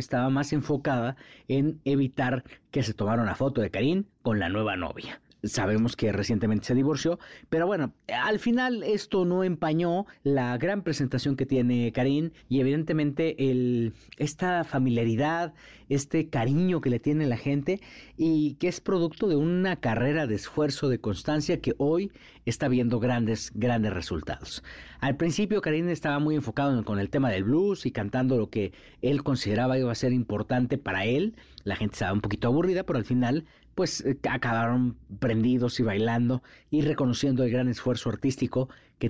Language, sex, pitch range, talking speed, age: Spanish, male, 115-150 Hz, 165 wpm, 40-59